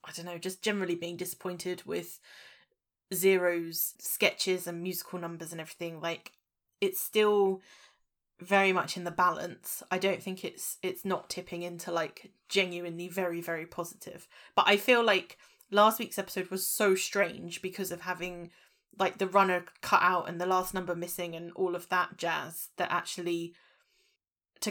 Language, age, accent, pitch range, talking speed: English, 20-39, British, 175-200 Hz, 165 wpm